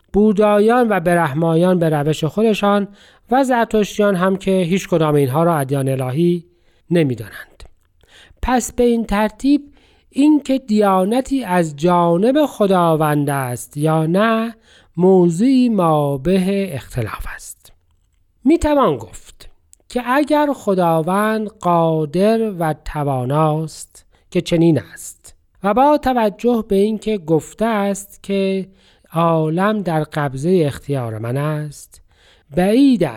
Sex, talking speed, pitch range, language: male, 110 wpm, 155-220 Hz, Persian